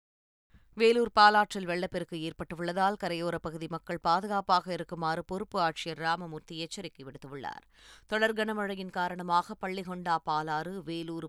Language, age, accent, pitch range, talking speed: Tamil, 20-39, native, 165-195 Hz, 105 wpm